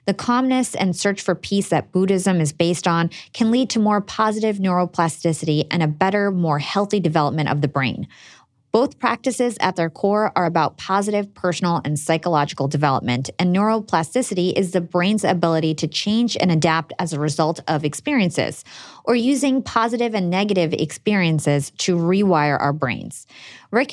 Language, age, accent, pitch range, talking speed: English, 30-49, American, 155-215 Hz, 160 wpm